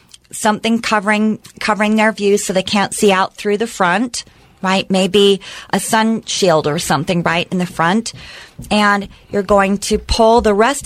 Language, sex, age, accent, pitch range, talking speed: English, female, 40-59, American, 190-220 Hz, 170 wpm